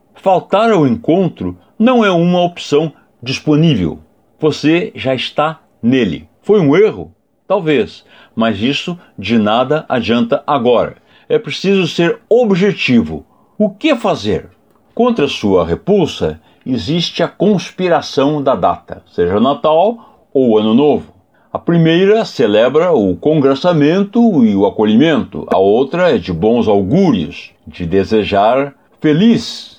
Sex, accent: male, Brazilian